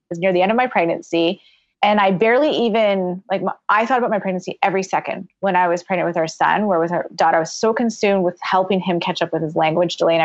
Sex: female